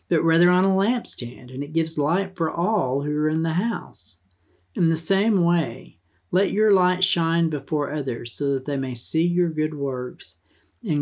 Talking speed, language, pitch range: 190 wpm, English, 135-180 Hz